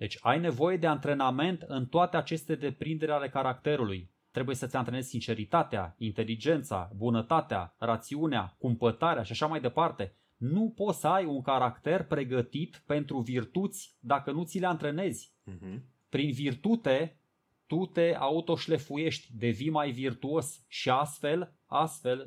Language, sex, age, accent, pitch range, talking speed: Romanian, male, 20-39, native, 120-165 Hz, 130 wpm